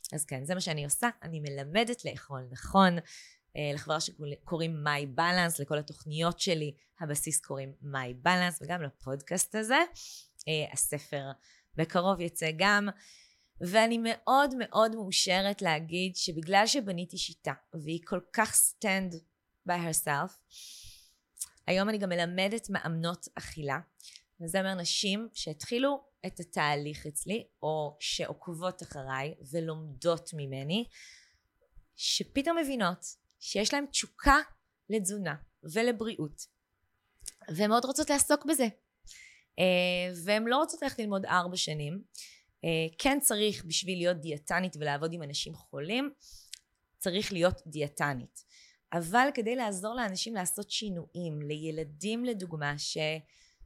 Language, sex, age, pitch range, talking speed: Hebrew, female, 20-39, 150-210 Hz, 110 wpm